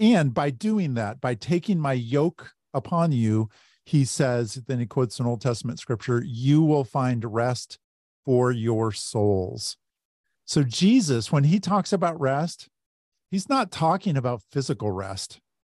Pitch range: 110-155 Hz